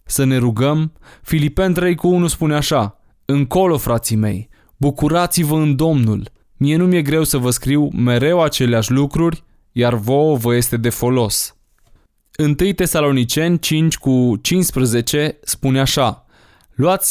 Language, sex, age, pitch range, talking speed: Romanian, male, 20-39, 120-155 Hz, 135 wpm